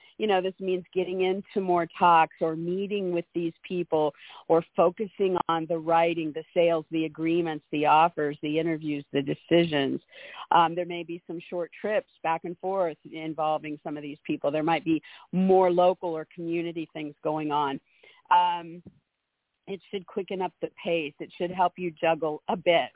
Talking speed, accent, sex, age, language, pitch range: 175 wpm, American, female, 50-69, English, 160-185 Hz